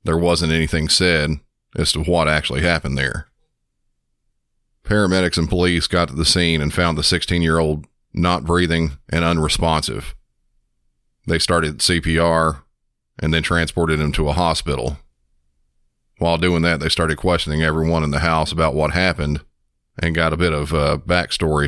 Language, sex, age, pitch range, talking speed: English, male, 40-59, 75-85 Hz, 150 wpm